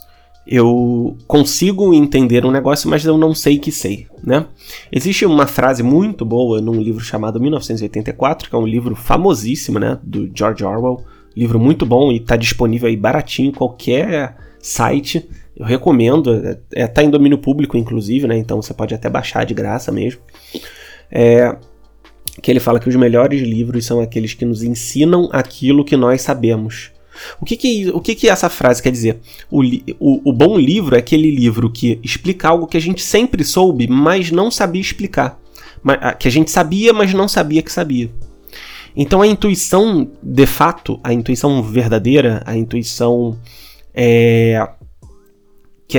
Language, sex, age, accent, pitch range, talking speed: Portuguese, male, 20-39, Brazilian, 115-150 Hz, 160 wpm